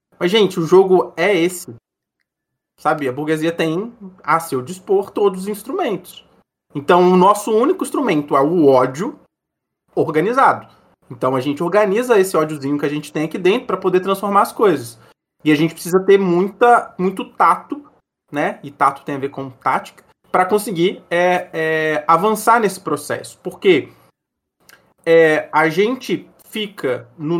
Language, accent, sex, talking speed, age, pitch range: Portuguese, Brazilian, male, 155 wpm, 20-39, 160-225 Hz